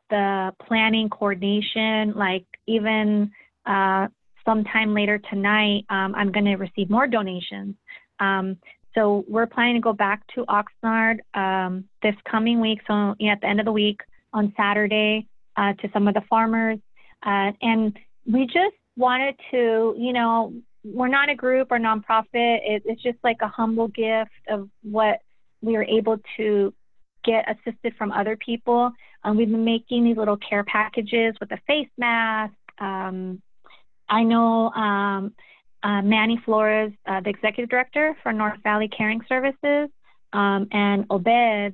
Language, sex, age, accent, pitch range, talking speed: English, female, 30-49, American, 205-230 Hz, 155 wpm